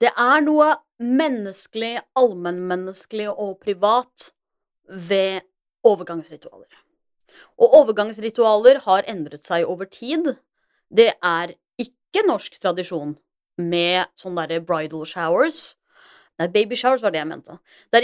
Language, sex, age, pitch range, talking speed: English, female, 30-49, 185-255 Hz, 120 wpm